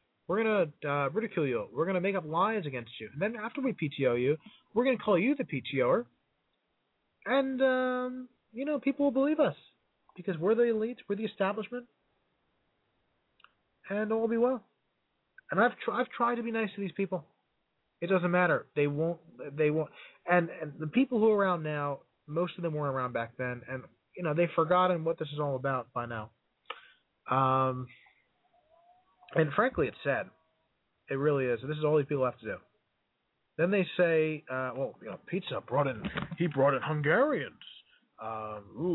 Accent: American